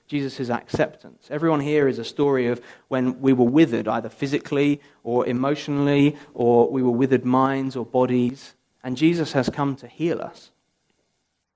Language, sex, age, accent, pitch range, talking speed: English, male, 40-59, British, 120-150 Hz, 155 wpm